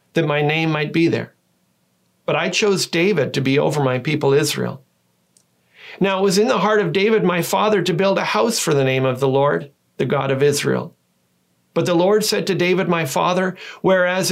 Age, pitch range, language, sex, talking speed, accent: 40-59, 130-175 Hz, English, male, 205 wpm, American